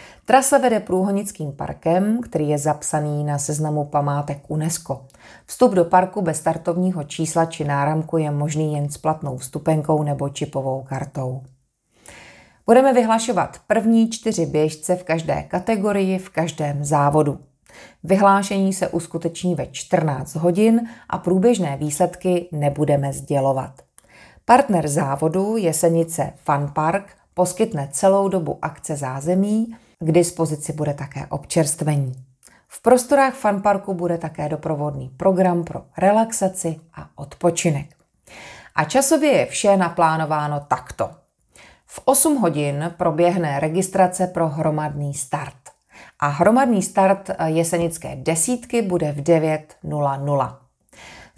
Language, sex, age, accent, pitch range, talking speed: Czech, female, 30-49, native, 150-195 Hz, 115 wpm